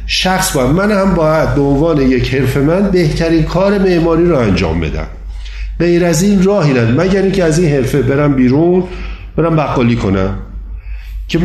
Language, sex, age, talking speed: Persian, male, 50-69, 155 wpm